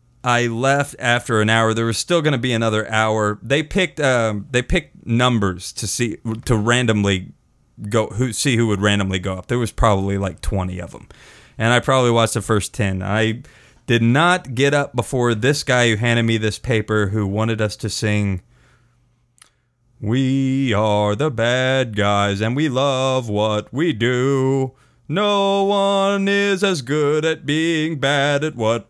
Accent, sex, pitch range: American, male, 110-135 Hz